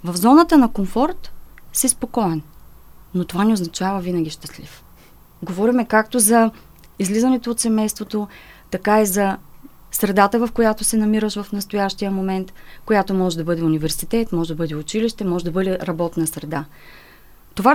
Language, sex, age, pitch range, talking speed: Bulgarian, female, 30-49, 175-225 Hz, 150 wpm